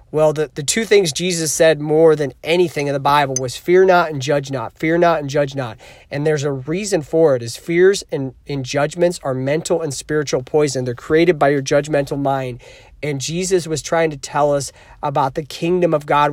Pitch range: 140-170 Hz